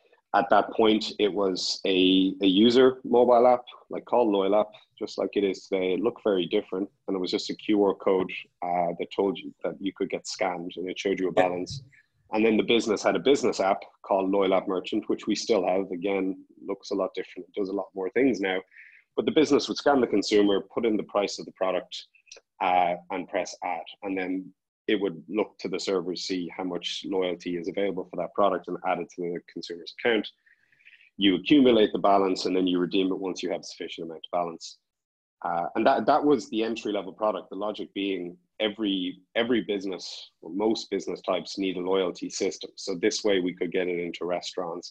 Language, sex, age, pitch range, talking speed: English, male, 30-49, 90-105 Hz, 220 wpm